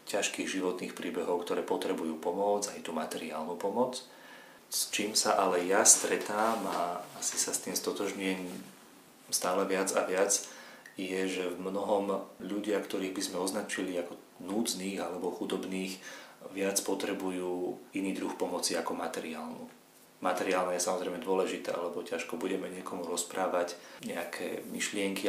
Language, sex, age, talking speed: Slovak, male, 30-49, 135 wpm